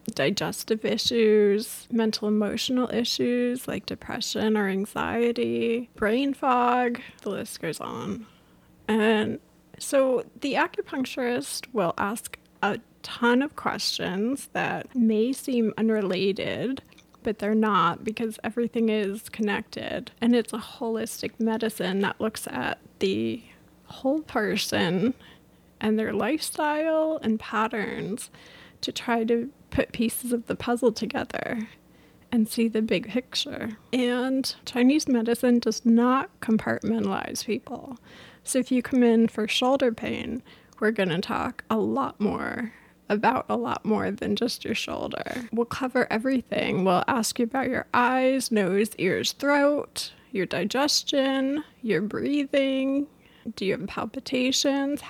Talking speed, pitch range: 125 wpm, 220-260 Hz